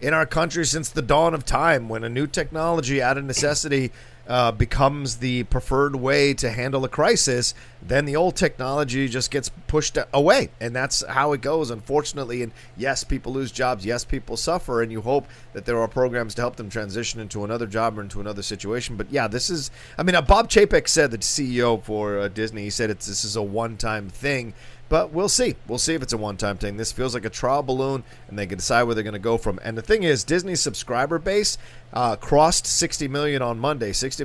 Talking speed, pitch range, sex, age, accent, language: 225 wpm, 115-140 Hz, male, 30-49, American, English